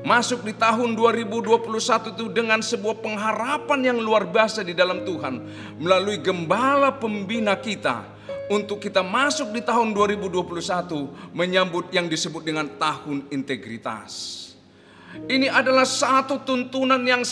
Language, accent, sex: Indonesian, native, male